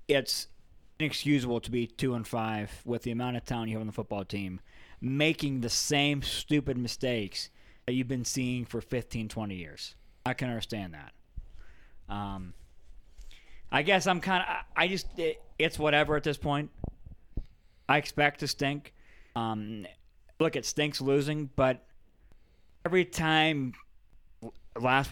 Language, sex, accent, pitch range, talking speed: English, male, American, 110-145 Hz, 150 wpm